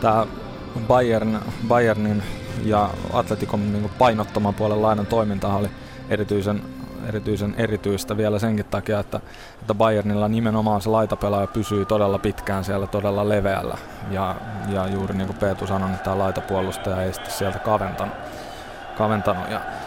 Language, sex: Finnish, male